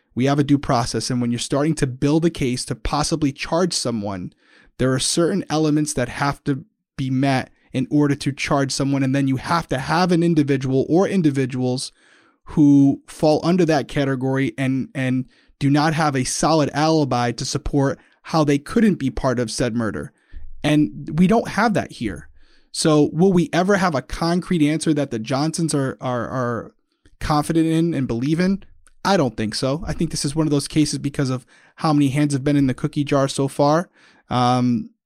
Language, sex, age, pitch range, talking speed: English, male, 30-49, 130-160 Hz, 195 wpm